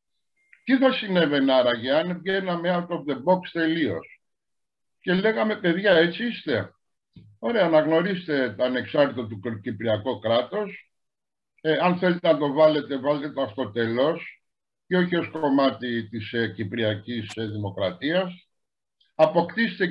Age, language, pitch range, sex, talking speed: 60-79, Greek, 130-175 Hz, male, 125 wpm